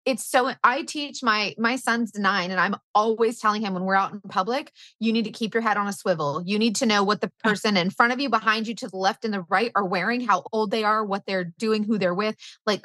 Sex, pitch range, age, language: female, 190-235 Hz, 30-49, English